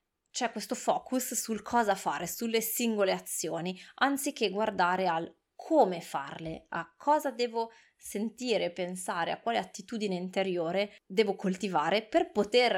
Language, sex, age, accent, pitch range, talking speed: Italian, female, 20-39, native, 175-220 Hz, 125 wpm